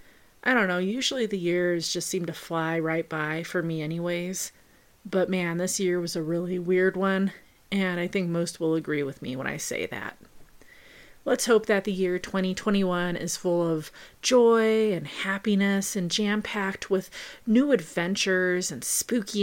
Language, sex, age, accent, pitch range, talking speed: English, female, 30-49, American, 175-210 Hz, 170 wpm